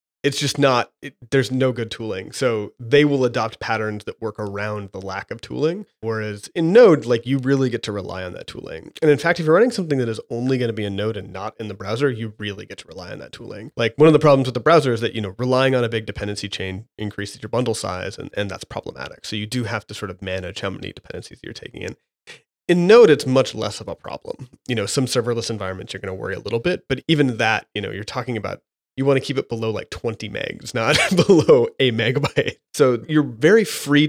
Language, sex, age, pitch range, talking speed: English, male, 30-49, 105-135 Hz, 250 wpm